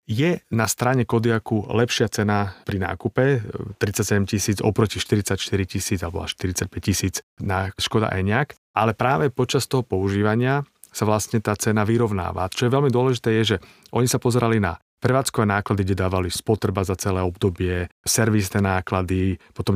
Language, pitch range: Slovak, 95-120 Hz